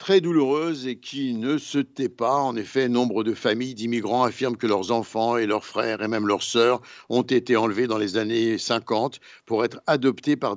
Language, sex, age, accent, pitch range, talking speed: Italian, male, 60-79, French, 115-150 Hz, 205 wpm